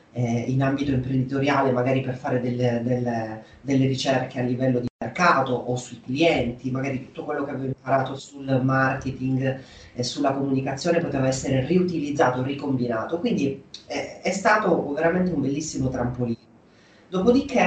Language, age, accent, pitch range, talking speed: Italian, 30-49, native, 125-145 Hz, 140 wpm